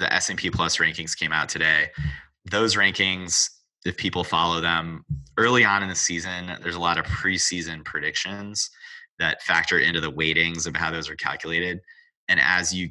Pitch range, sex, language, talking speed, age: 80-90 Hz, male, English, 175 wpm, 30-49